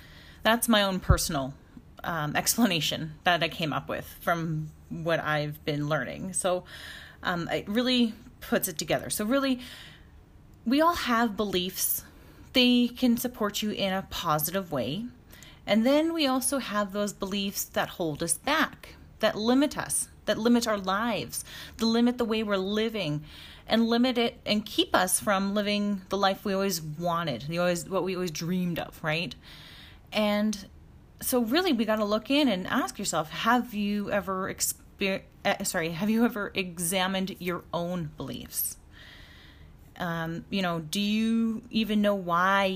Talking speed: 160 wpm